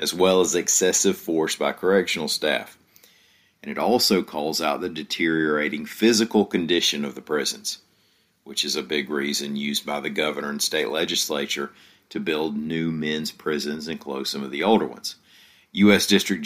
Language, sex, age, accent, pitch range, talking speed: English, male, 50-69, American, 75-100 Hz, 170 wpm